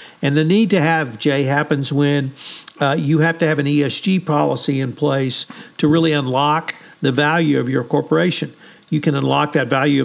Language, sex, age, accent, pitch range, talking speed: English, male, 50-69, American, 135-160 Hz, 185 wpm